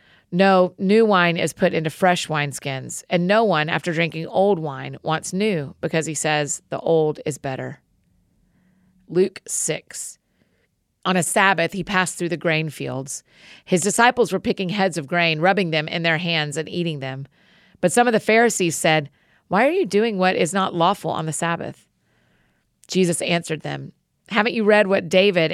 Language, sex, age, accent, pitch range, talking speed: English, female, 40-59, American, 160-195 Hz, 175 wpm